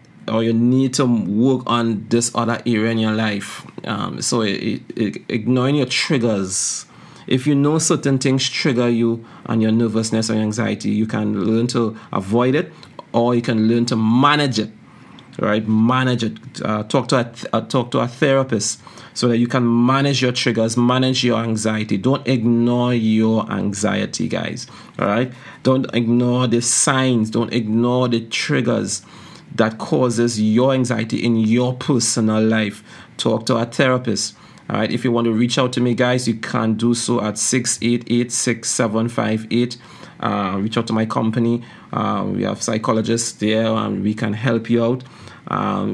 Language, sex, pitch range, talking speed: English, male, 110-125 Hz, 170 wpm